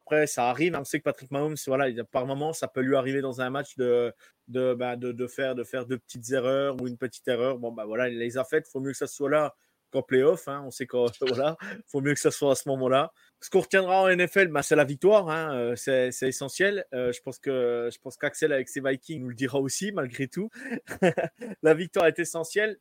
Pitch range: 135-170 Hz